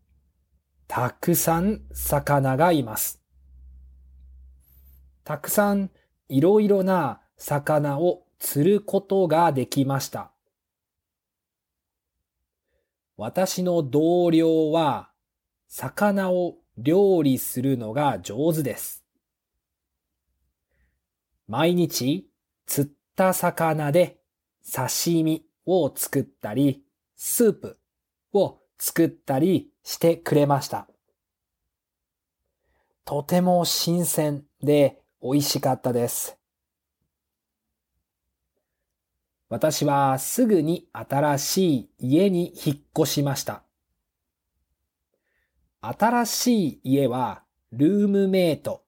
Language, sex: Japanese, male